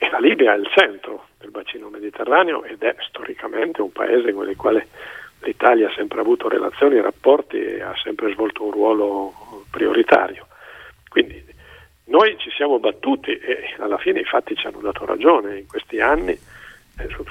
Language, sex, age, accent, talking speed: Italian, male, 50-69, native, 170 wpm